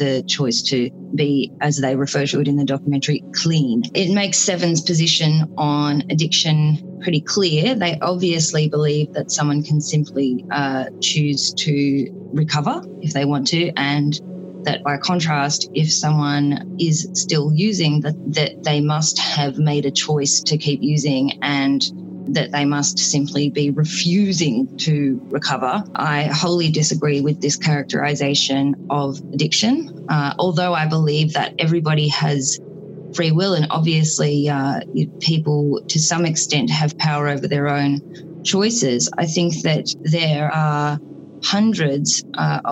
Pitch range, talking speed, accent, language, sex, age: 145-175 Hz, 145 wpm, Australian, English, female, 20-39